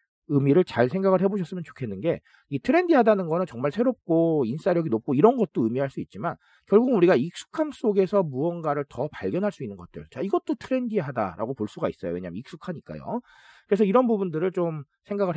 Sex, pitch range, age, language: male, 135-220 Hz, 40-59, Korean